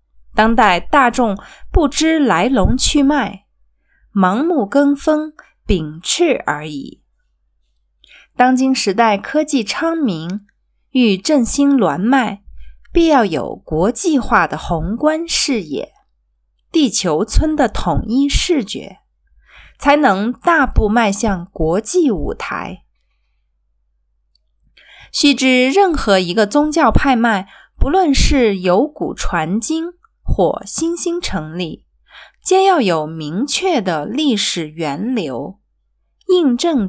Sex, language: female, Chinese